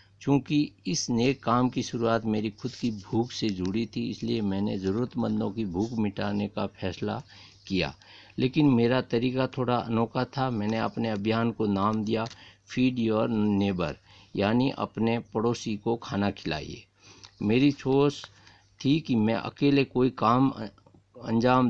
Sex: male